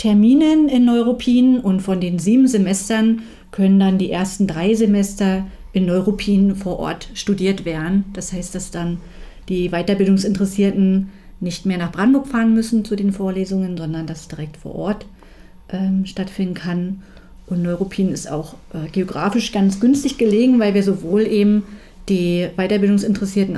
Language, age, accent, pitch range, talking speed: German, 40-59, German, 180-215 Hz, 150 wpm